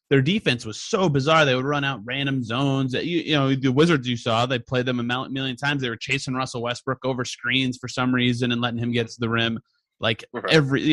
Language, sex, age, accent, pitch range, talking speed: English, male, 30-49, American, 120-160 Hz, 245 wpm